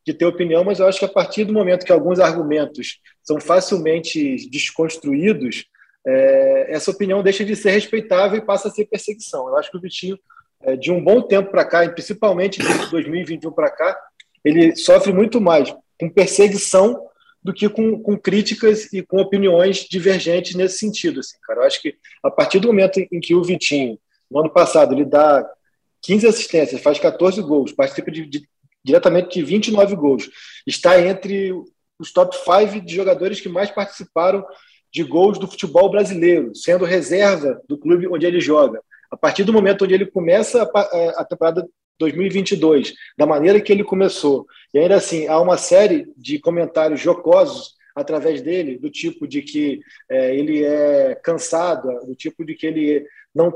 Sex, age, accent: male, 20-39, Brazilian